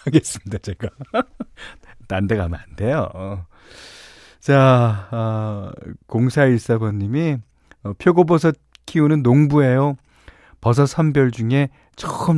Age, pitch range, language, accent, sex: 40-59, 95-140 Hz, Korean, native, male